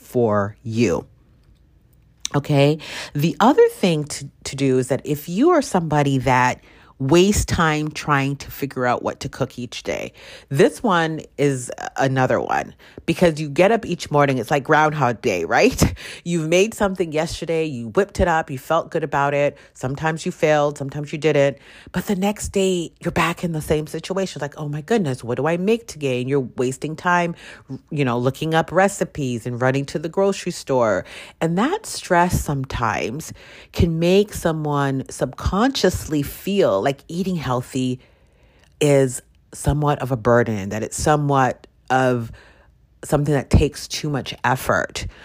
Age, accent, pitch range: 40-59, American, 135-170 Hz